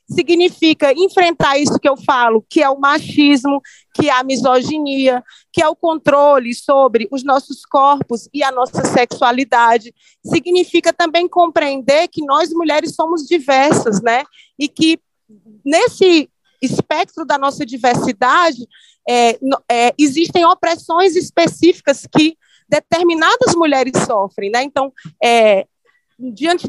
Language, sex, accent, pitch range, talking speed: Portuguese, female, Brazilian, 240-300 Hz, 115 wpm